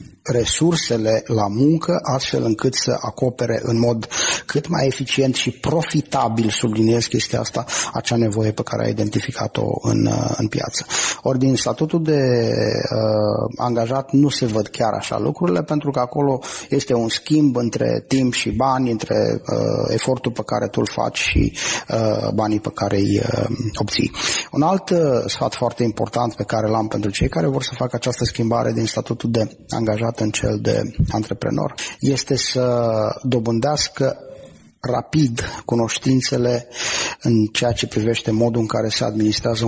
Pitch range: 110-130 Hz